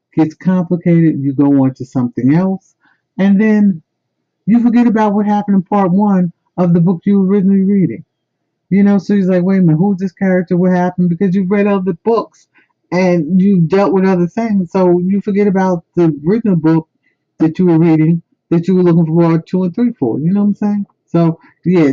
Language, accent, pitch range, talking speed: English, American, 145-195 Hz, 215 wpm